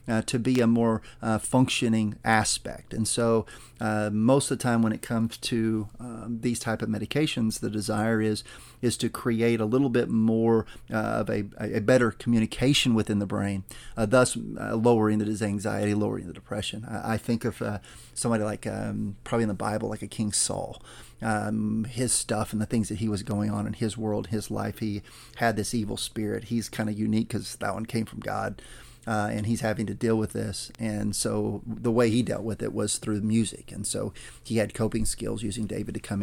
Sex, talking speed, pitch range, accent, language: male, 215 wpm, 105-115 Hz, American, English